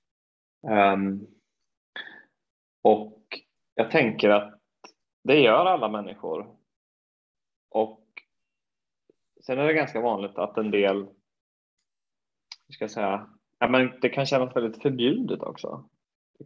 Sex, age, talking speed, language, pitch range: male, 20-39, 110 wpm, Swedish, 105-135 Hz